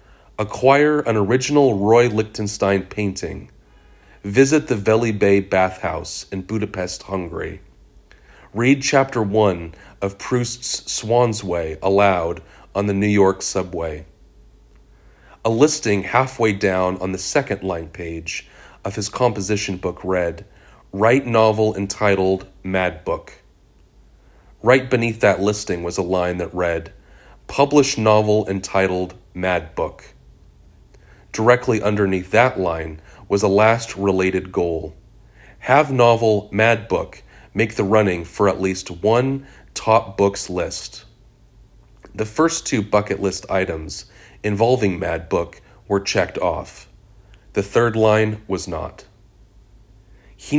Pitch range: 95-110 Hz